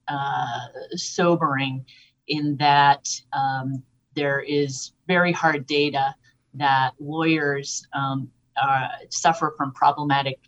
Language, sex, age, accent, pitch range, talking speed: English, female, 30-49, American, 140-160 Hz, 95 wpm